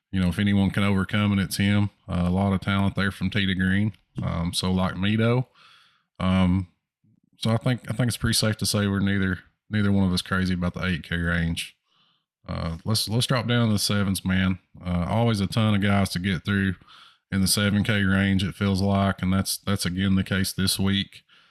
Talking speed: 215 wpm